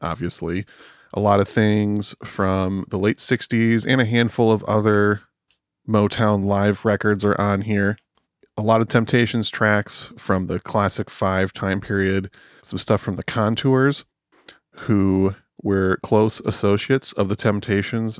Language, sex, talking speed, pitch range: English, male, 140 wpm, 95-110 Hz